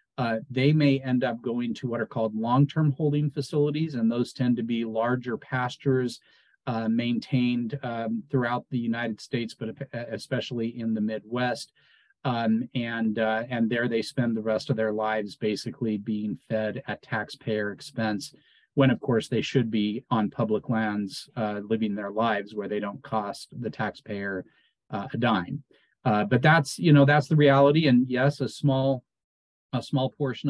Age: 40-59